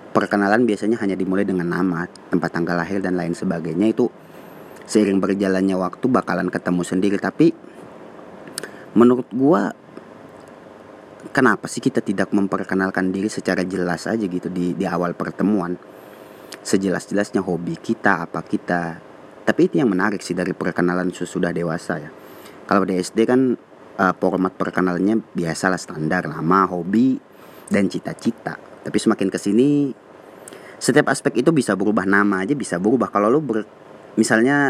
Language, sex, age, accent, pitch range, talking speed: Indonesian, male, 30-49, native, 90-105 Hz, 140 wpm